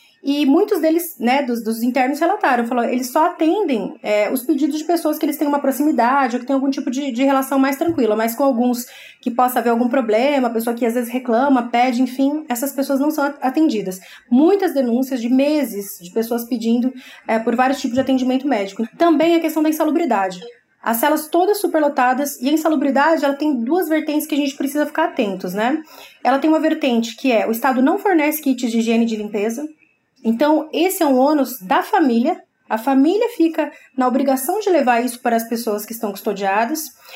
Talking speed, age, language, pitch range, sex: 205 wpm, 20-39, Portuguese, 240-310 Hz, female